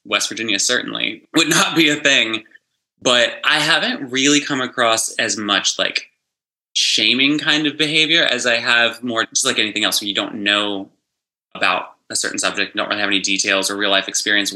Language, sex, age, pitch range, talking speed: English, male, 20-39, 100-125 Hz, 185 wpm